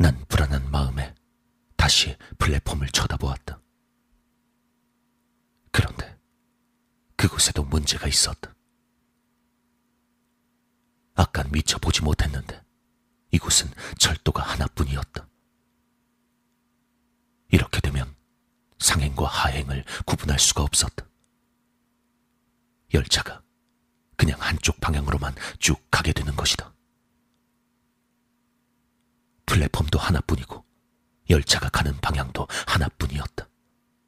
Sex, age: male, 40-59